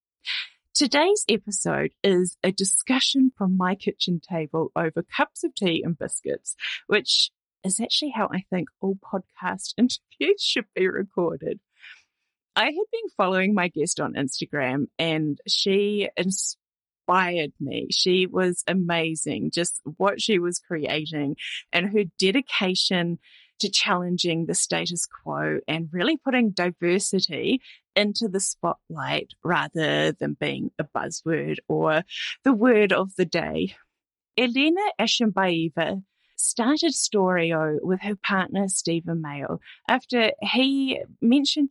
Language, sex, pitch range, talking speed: English, female, 165-220 Hz, 120 wpm